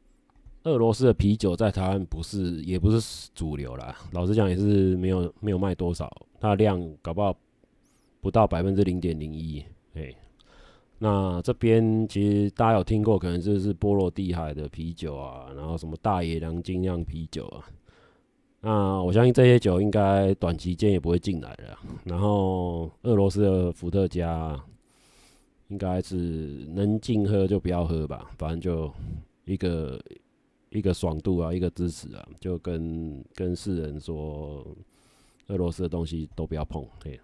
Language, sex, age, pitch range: Chinese, male, 30-49, 80-100 Hz